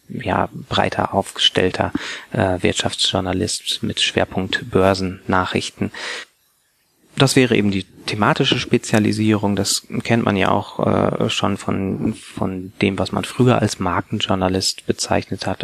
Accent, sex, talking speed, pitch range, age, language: German, male, 120 wpm, 95-110 Hz, 30-49, German